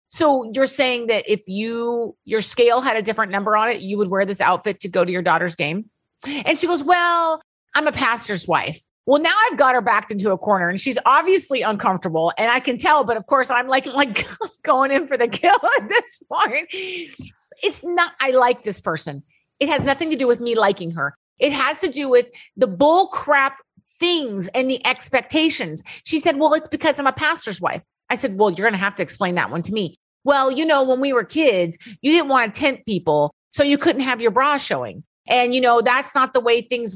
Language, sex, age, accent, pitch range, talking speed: English, female, 30-49, American, 210-295 Hz, 230 wpm